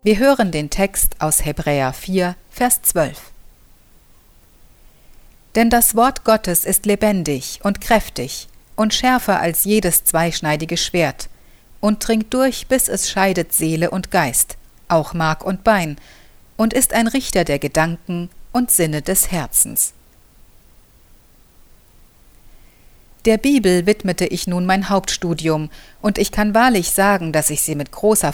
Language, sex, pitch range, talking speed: German, female, 155-215 Hz, 135 wpm